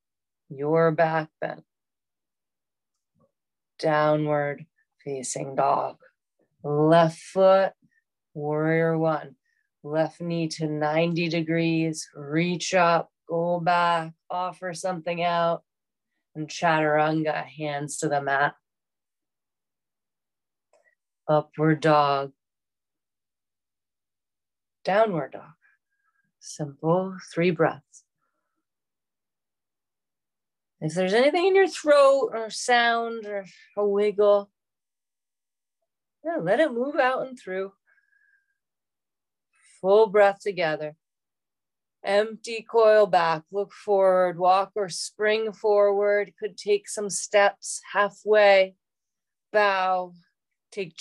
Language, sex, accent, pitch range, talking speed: English, female, American, 160-210 Hz, 85 wpm